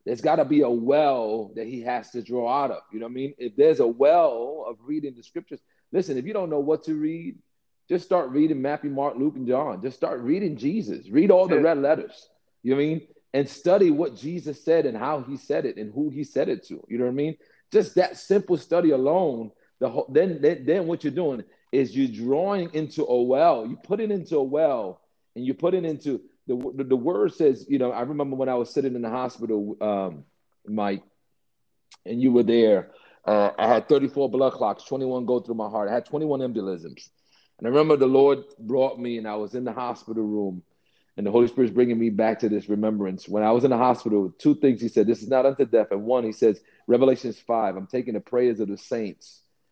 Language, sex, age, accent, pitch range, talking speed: English, male, 40-59, American, 115-145 Hz, 240 wpm